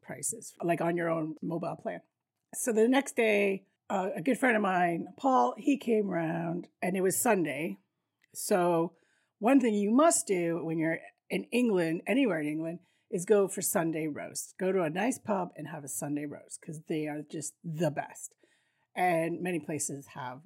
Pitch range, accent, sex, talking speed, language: 160-215 Hz, American, female, 185 wpm, English